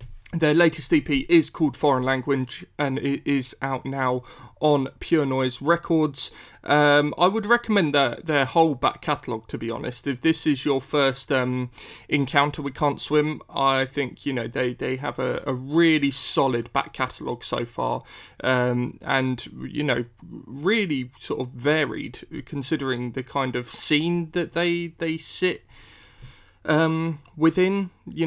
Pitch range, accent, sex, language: 125-150 Hz, British, male, English